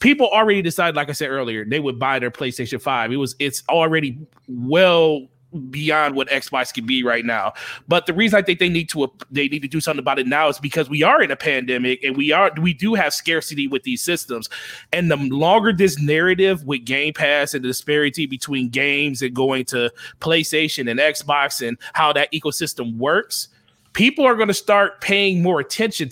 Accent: American